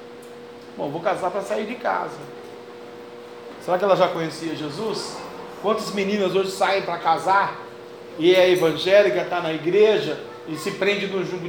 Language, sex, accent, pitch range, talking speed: Portuguese, male, Brazilian, 175-220 Hz, 150 wpm